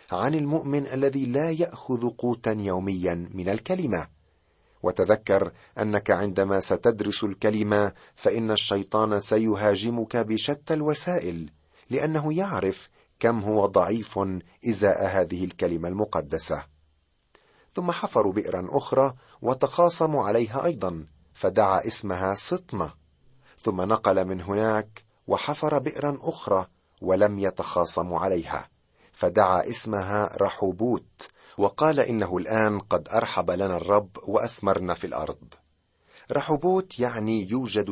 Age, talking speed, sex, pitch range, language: 40-59, 100 wpm, male, 95-135 Hz, Arabic